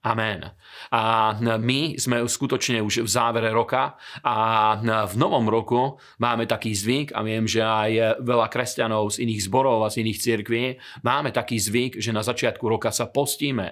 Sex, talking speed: male, 165 wpm